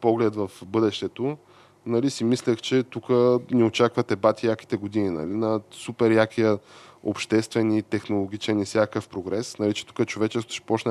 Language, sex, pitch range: Bulgarian, male, 105-120 Hz